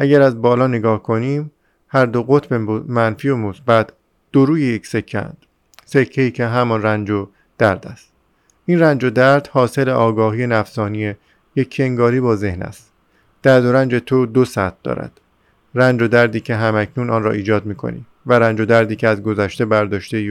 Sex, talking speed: male, 175 wpm